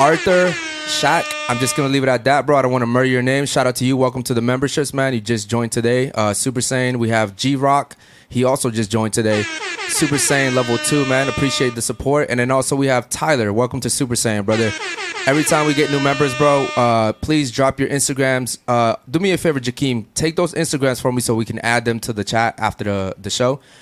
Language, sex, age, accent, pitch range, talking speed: English, male, 20-39, American, 115-140 Hz, 240 wpm